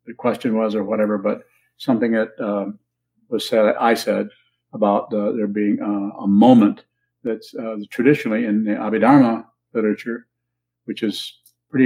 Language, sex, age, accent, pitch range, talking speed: English, male, 50-69, American, 100-135 Hz, 150 wpm